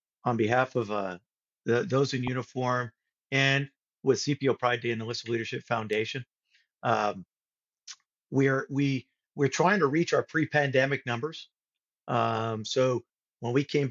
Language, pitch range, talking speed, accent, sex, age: English, 120-145 Hz, 150 wpm, American, male, 50-69